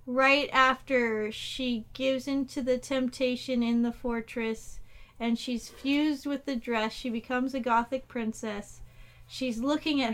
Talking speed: 140 wpm